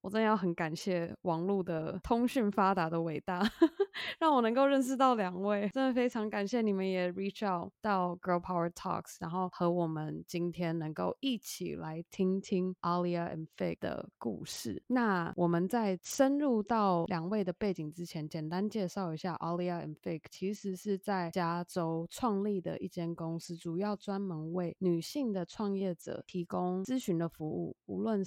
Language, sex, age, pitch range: Chinese, female, 20-39, 165-200 Hz